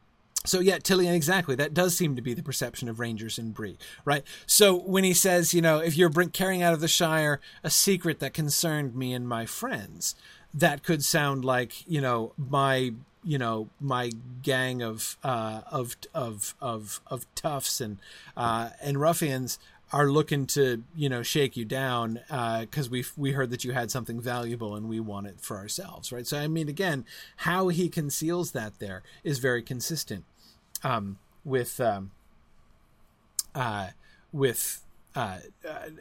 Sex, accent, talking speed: male, American, 170 wpm